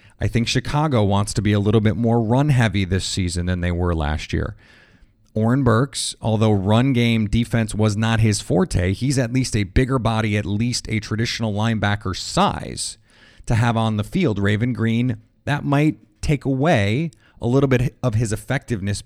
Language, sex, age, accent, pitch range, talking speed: English, male, 30-49, American, 105-125 Hz, 180 wpm